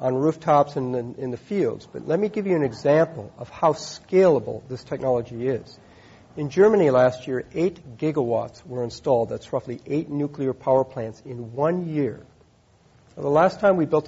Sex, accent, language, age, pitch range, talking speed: male, American, English, 50-69, 130-175 Hz, 175 wpm